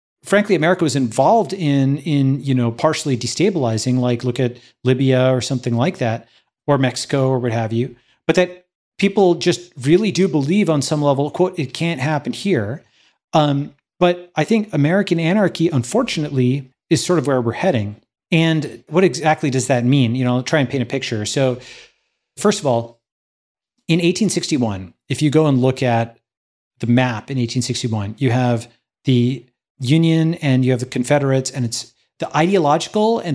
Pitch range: 125-160 Hz